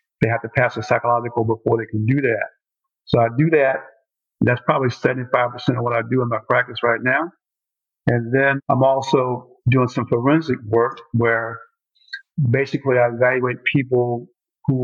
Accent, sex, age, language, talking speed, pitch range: American, male, 50-69, English, 170 wpm, 120-135 Hz